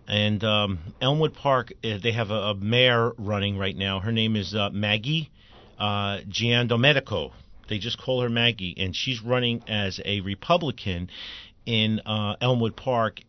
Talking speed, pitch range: 150 wpm, 105-140 Hz